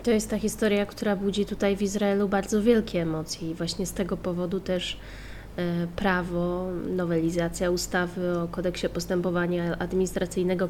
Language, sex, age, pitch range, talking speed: Polish, female, 20-39, 175-205 Hz, 140 wpm